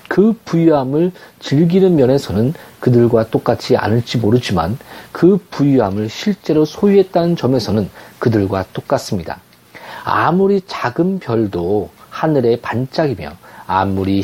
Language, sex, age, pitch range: Korean, male, 40-59, 115-175 Hz